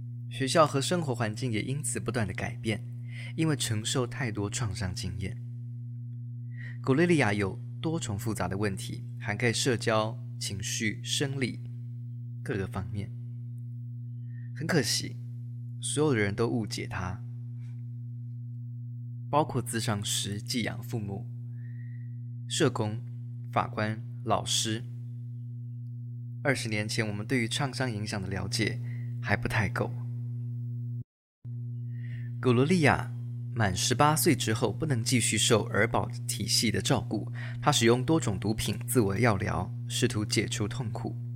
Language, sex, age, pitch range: Chinese, male, 20-39, 110-120 Hz